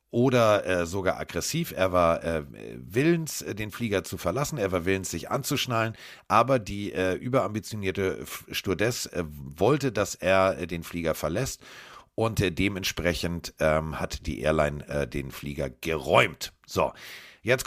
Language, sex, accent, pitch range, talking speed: German, male, German, 85-115 Hz, 145 wpm